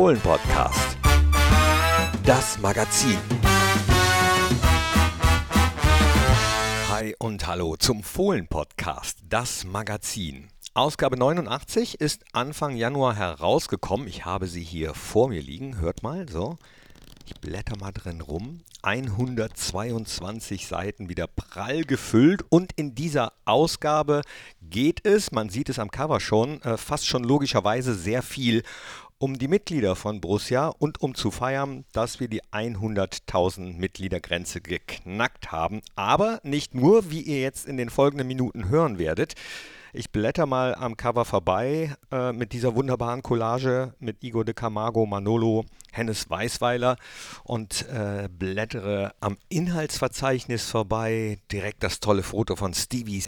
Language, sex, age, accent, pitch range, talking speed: German, male, 50-69, German, 100-130 Hz, 125 wpm